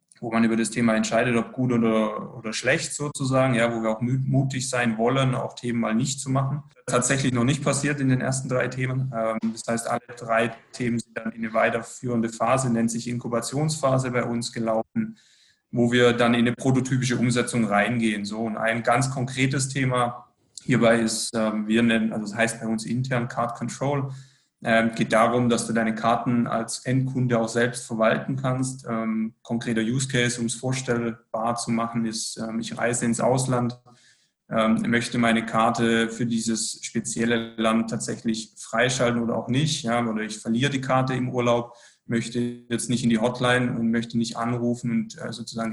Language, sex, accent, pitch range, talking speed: German, male, German, 115-125 Hz, 180 wpm